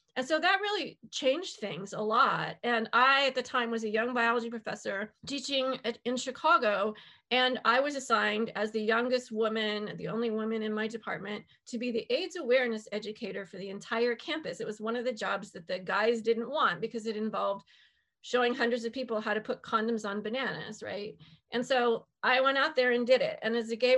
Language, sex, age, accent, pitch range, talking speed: English, female, 30-49, American, 220-255 Hz, 210 wpm